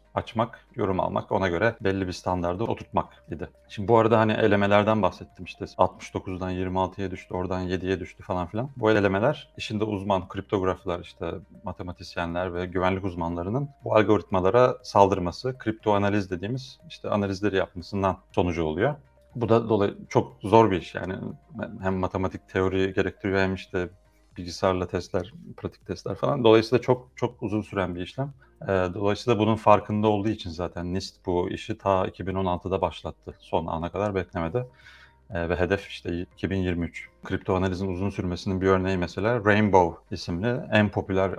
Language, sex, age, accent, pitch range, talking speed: Turkish, male, 40-59, native, 90-105 Hz, 150 wpm